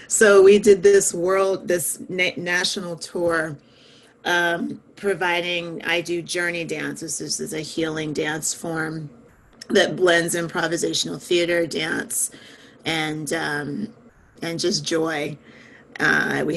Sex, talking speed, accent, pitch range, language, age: female, 120 wpm, American, 155-185 Hz, English, 30-49